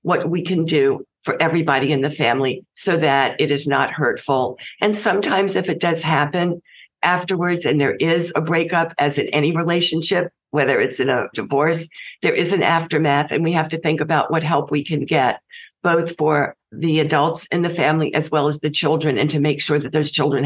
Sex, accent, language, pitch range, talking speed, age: female, American, English, 140-160 Hz, 205 wpm, 50-69